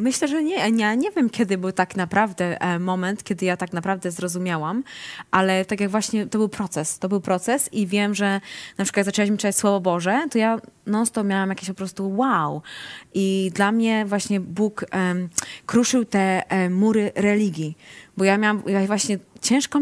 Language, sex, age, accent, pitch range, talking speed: Polish, female, 20-39, native, 180-215 Hz, 180 wpm